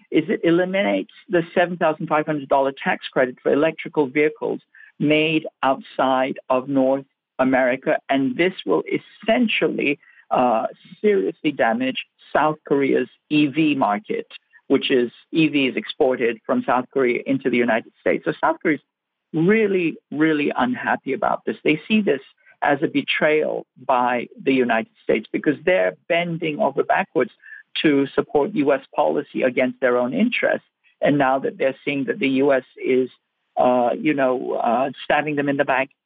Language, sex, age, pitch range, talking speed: English, male, 50-69, 140-200 Hz, 145 wpm